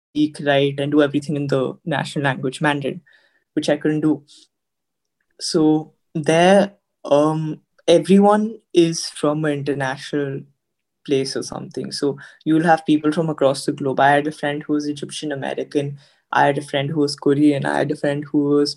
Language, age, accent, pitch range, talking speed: English, 20-39, Indian, 145-170 Hz, 175 wpm